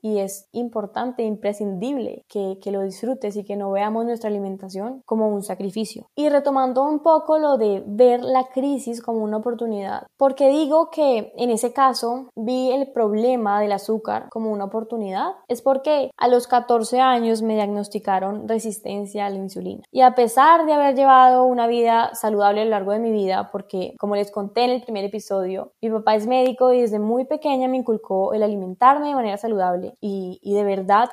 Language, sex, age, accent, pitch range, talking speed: Spanish, female, 10-29, Colombian, 205-245 Hz, 185 wpm